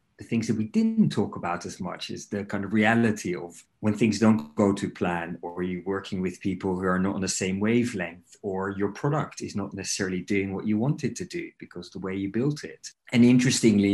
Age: 30-49